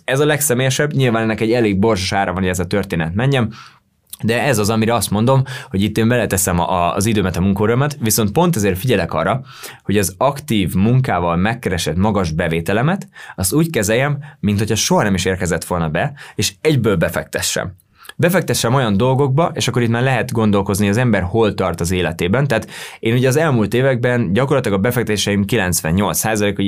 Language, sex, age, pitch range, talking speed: Hungarian, male, 20-39, 95-115 Hz, 180 wpm